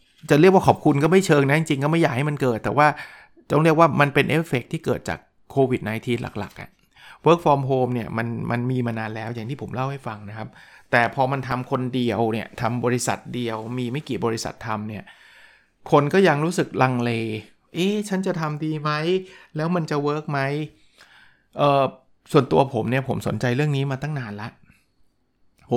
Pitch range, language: 115-150 Hz, Thai